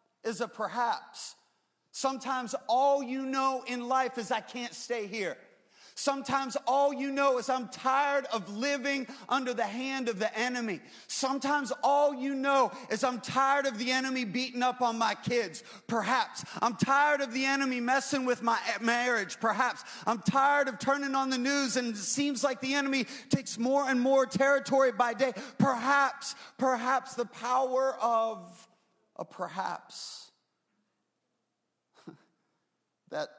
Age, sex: 30-49, male